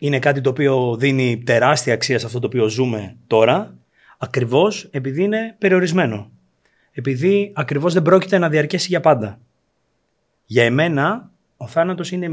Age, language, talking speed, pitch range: 30-49, Greek, 145 wpm, 120-160 Hz